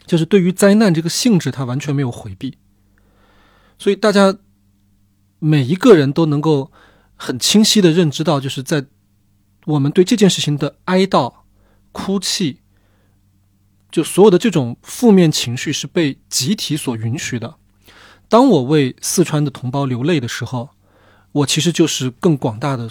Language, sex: Chinese, male